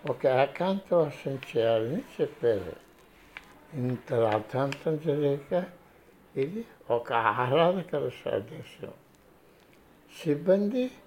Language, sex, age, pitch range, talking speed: Telugu, male, 60-79, 135-185 Hz, 70 wpm